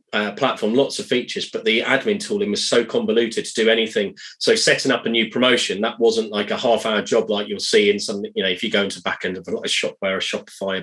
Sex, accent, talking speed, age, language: male, British, 265 wpm, 20-39, English